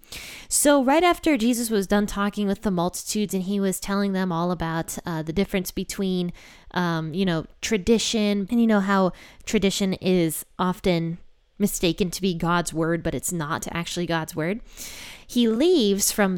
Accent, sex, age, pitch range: American, female, 20-39, 175-215 Hz